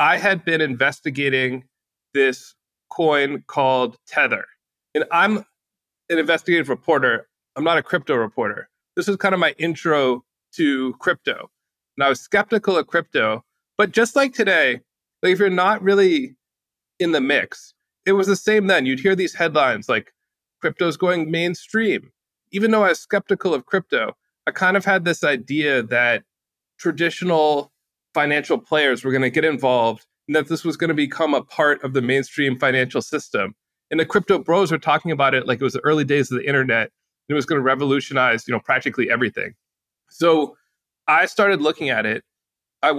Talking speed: 175 wpm